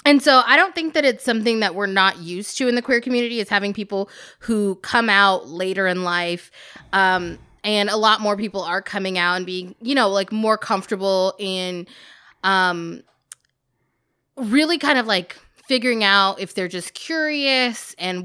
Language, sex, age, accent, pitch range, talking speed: English, female, 20-39, American, 185-230 Hz, 180 wpm